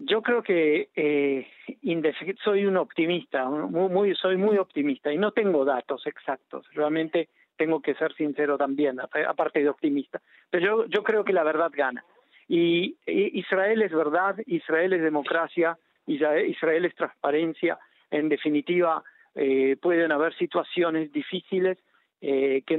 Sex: male